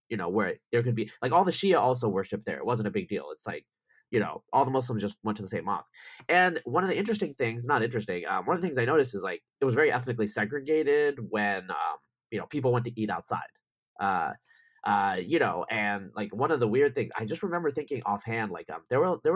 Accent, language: American, English